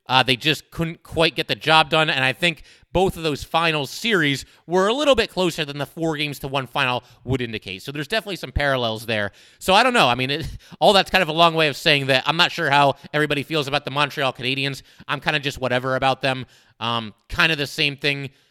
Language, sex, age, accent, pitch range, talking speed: English, male, 30-49, American, 135-170 Hz, 245 wpm